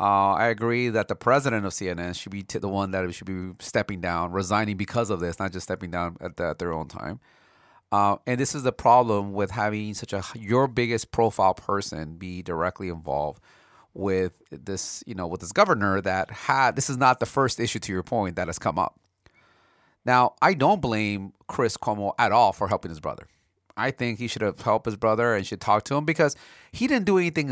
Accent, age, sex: American, 30-49, male